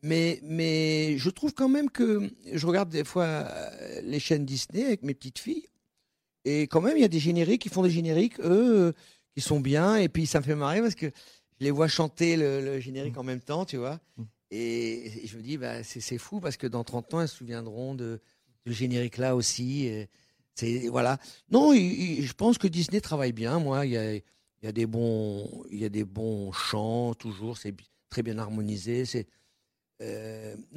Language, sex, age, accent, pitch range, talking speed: French, male, 50-69, French, 110-155 Hz, 220 wpm